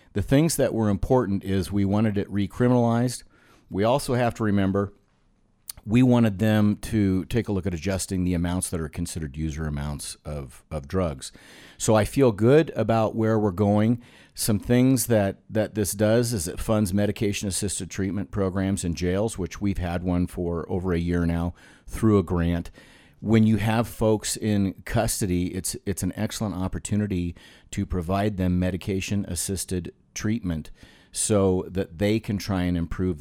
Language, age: English, 50-69